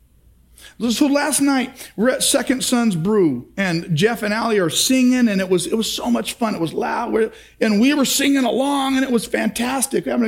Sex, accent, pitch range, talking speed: male, American, 215-305 Hz, 210 wpm